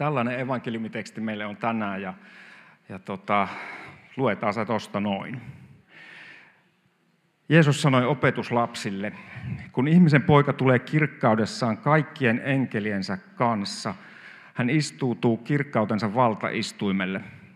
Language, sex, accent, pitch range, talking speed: Finnish, male, native, 110-140 Hz, 90 wpm